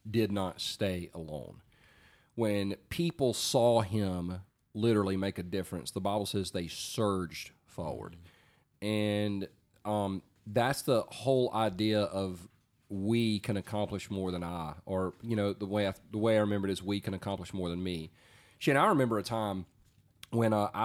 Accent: American